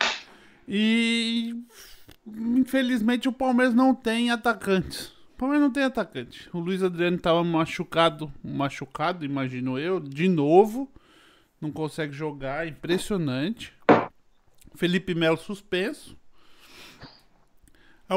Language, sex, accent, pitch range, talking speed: Portuguese, male, Brazilian, 175-255 Hz, 100 wpm